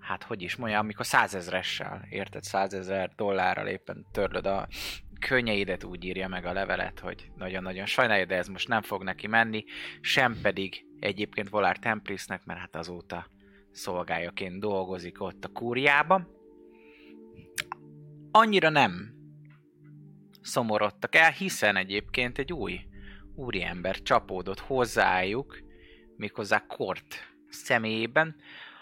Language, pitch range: Hungarian, 95-125 Hz